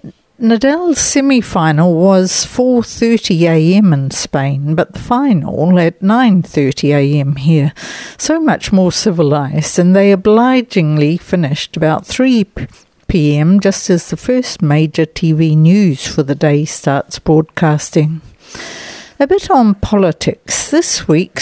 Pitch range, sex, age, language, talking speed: 155-195 Hz, female, 60-79, English, 110 wpm